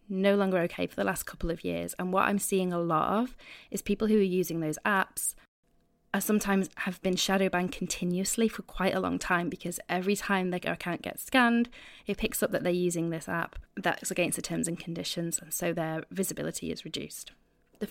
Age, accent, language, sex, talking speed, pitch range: 20-39, British, English, female, 210 wpm, 175-210 Hz